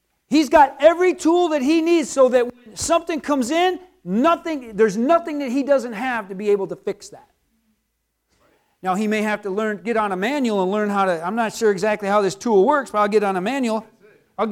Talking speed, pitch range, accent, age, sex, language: 225 wpm, 195-270 Hz, American, 40-59, male, English